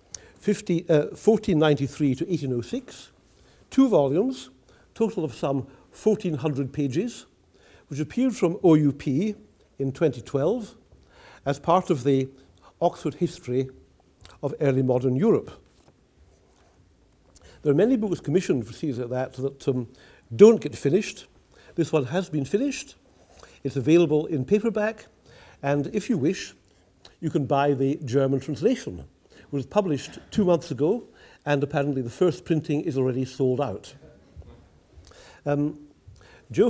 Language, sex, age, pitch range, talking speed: English, male, 60-79, 130-170 Hz, 125 wpm